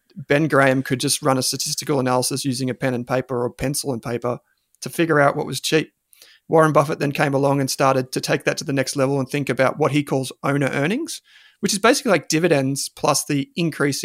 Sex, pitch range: male, 135-170 Hz